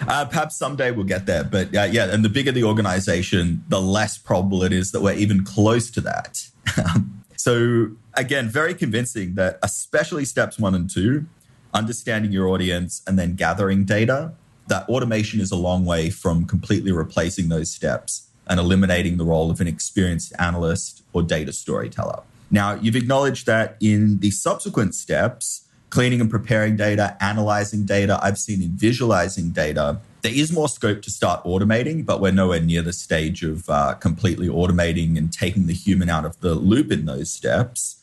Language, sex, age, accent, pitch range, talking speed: English, male, 30-49, Australian, 90-115 Hz, 175 wpm